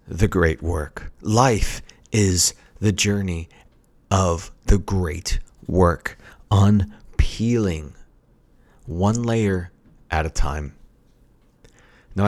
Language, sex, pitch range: English, male, 95-140 Hz